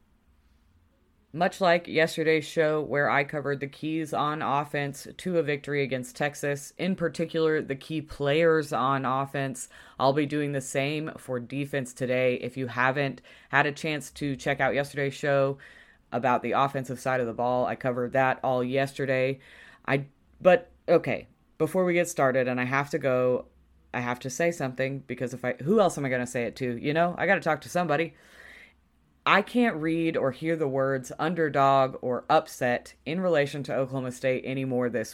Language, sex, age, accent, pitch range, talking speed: English, female, 20-39, American, 130-160 Hz, 185 wpm